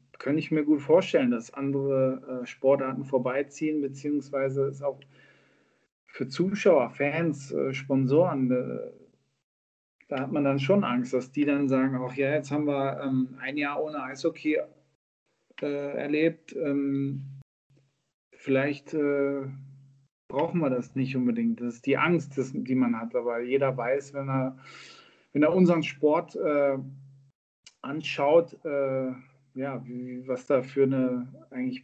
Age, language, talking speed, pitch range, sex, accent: 40-59, German, 145 wpm, 130-155 Hz, male, German